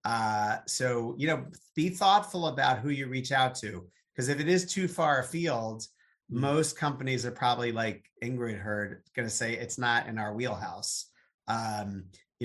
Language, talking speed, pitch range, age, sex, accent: English, 175 wpm, 115-140 Hz, 30-49, male, American